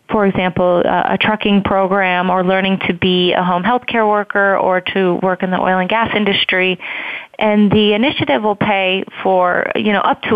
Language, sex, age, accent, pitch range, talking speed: English, female, 20-39, American, 185-210 Hz, 195 wpm